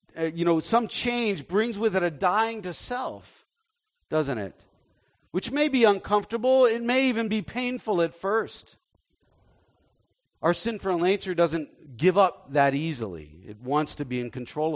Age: 50-69